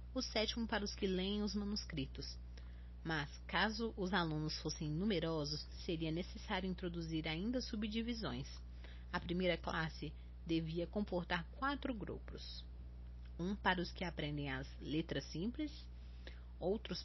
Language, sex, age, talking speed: Portuguese, female, 30-49, 125 wpm